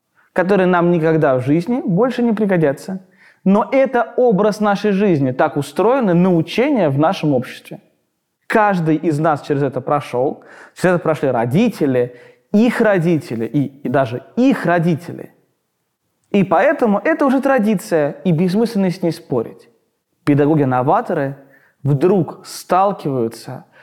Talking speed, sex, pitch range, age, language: 125 wpm, male, 140-180 Hz, 20-39, Russian